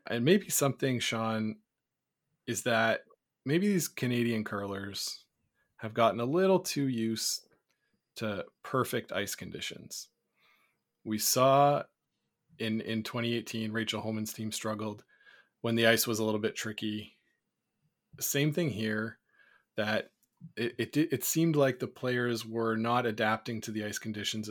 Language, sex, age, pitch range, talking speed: English, male, 20-39, 110-125 Hz, 135 wpm